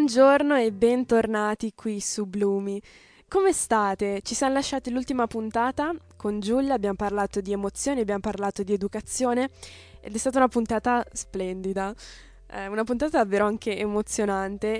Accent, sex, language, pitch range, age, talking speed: native, female, Italian, 200-235 Hz, 10-29, 140 wpm